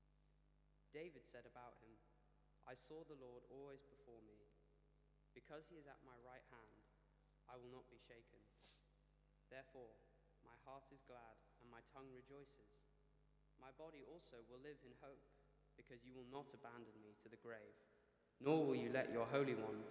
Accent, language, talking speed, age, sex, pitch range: British, English, 165 wpm, 20-39, male, 120-145 Hz